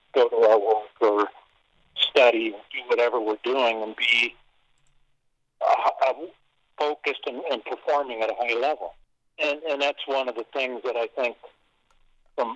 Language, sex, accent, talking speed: English, male, American, 160 wpm